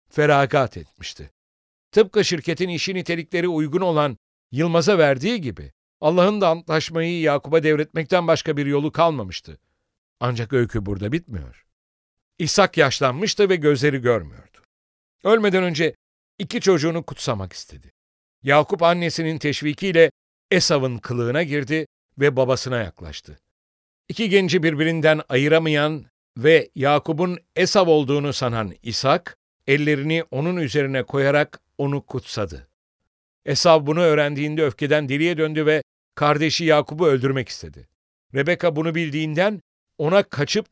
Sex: male